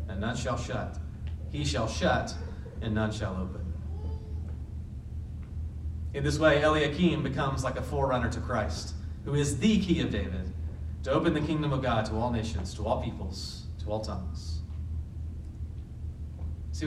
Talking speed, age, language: 150 wpm, 30-49, English